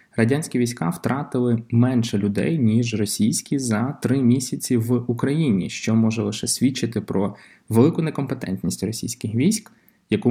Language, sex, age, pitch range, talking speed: Ukrainian, male, 20-39, 105-125 Hz, 130 wpm